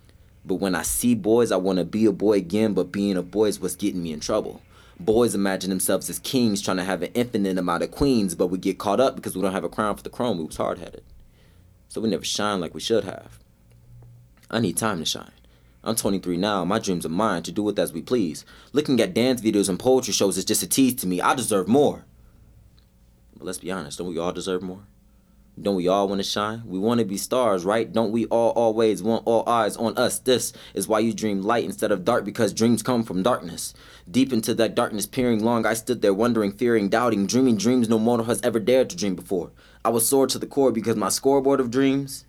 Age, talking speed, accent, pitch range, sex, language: 20-39, 240 wpm, American, 90-120 Hz, male, English